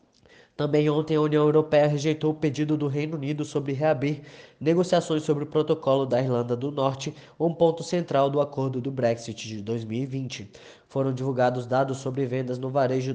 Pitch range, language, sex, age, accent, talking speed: 125-150 Hz, Portuguese, male, 20-39, Brazilian, 170 wpm